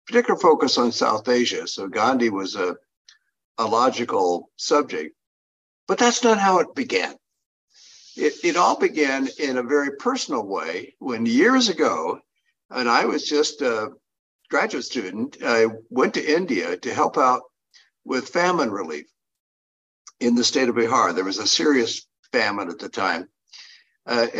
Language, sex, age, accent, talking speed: English, male, 60-79, American, 150 wpm